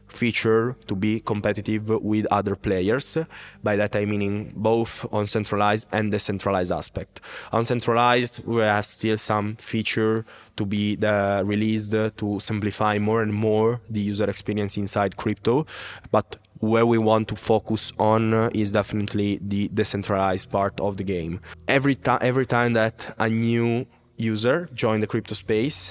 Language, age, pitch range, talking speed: English, 20-39, 100-110 Hz, 150 wpm